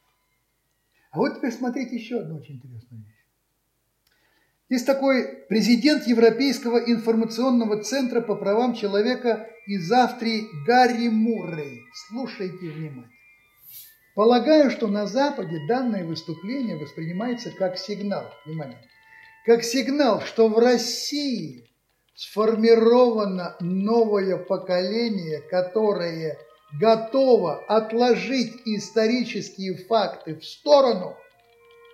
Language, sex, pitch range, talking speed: Russian, male, 180-255 Hz, 90 wpm